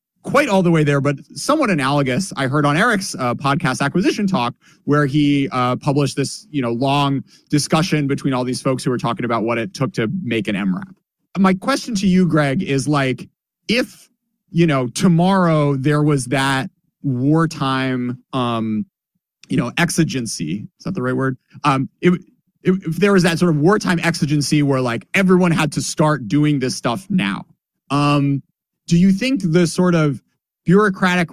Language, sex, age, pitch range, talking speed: English, male, 30-49, 130-175 Hz, 175 wpm